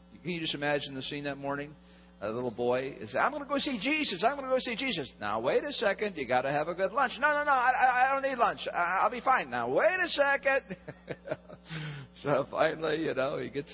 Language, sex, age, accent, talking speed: English, male, 50-69, American, 245 wpm